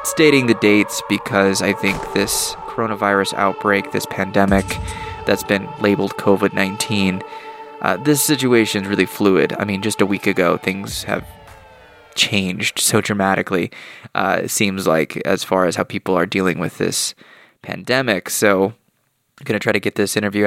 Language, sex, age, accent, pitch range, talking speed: English, male, 20-39, American, 95-115 Hz, 160 wpm